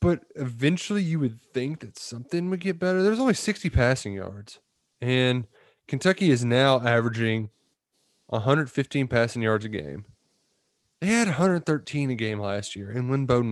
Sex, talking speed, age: male, 155 wpm, 20-39